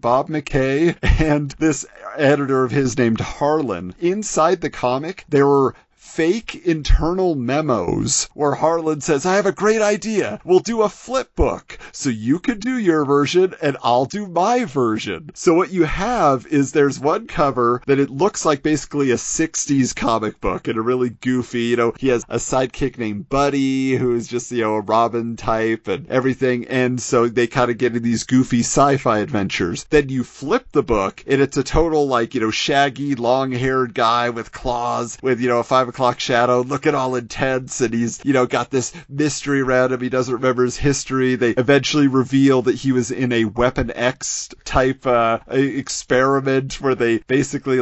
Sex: male